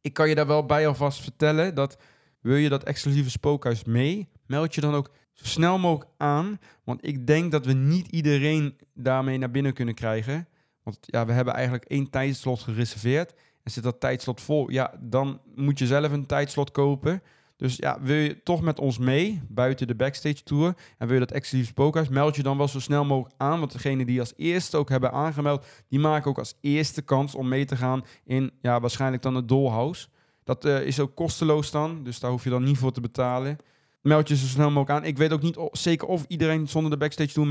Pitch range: 125-145 Hz